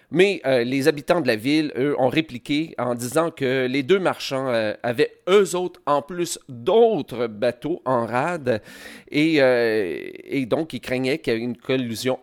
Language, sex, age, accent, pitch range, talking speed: French, male, 40-59, Canadian, 120-165 Hz, 180 wpm